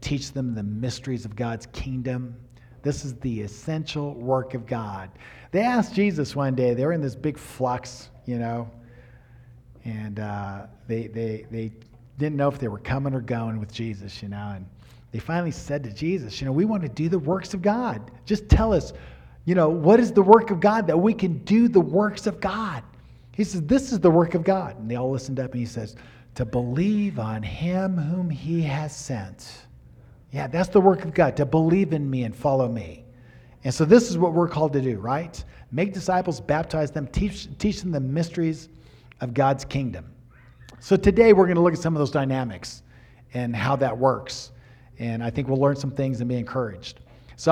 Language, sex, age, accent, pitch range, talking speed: English, male, 50-69, American, 120-165 Hz, 205 wpm